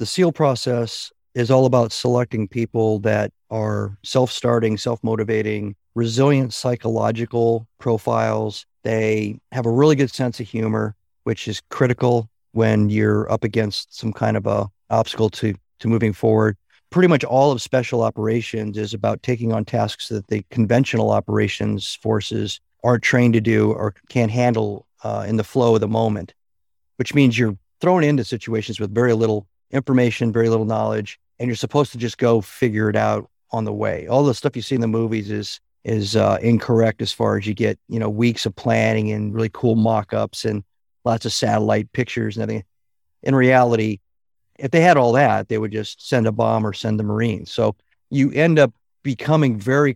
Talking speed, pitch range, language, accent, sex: 180 wpm, 110-125 Hz, English, American, male